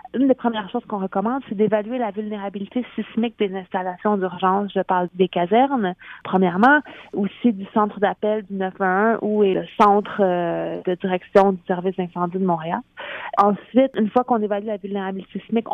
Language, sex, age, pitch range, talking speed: French, female, 30-49, 190-215 Hz, 170 wpm